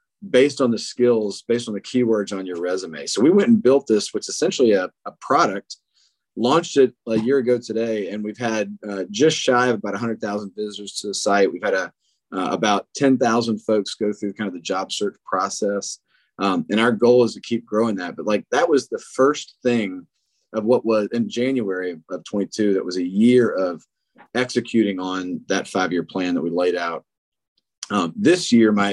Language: English